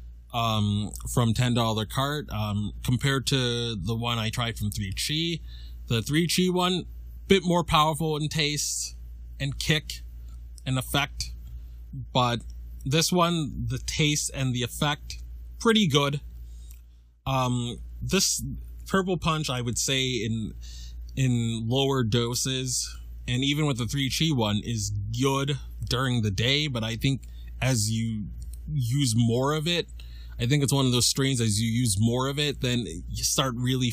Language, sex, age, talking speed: English, male, 20-39, 155 wpm